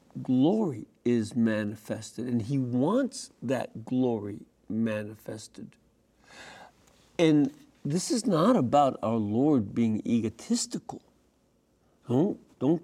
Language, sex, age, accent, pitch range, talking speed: English, male, 60-79, American, 125-195 Hz, 90 wpm